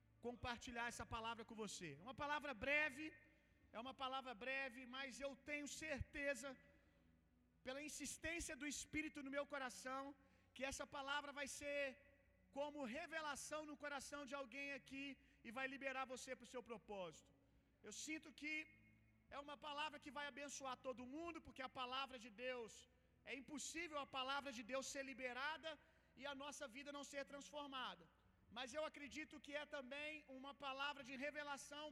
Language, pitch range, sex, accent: Gujarati, 245-290 Hz, male, Brazilian